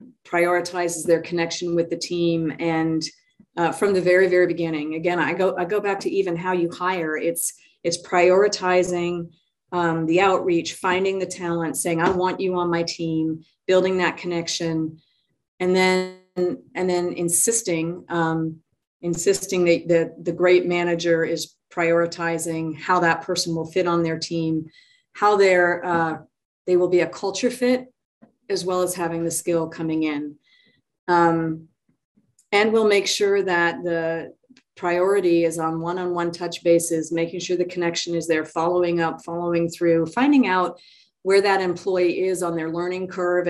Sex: female